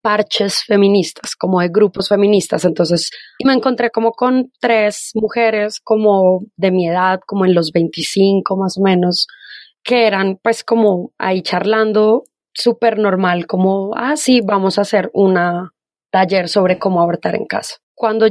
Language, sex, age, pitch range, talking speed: Spanish, female, 20-39, 190-225 Hz, 155 wpm